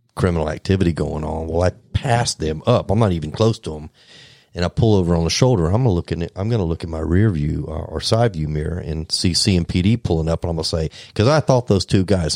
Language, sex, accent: English, male, American